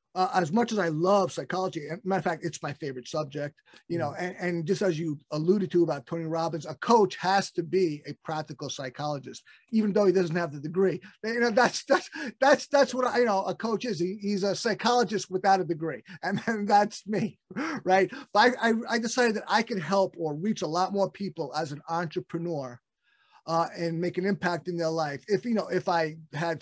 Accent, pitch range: American, 155-200 Hz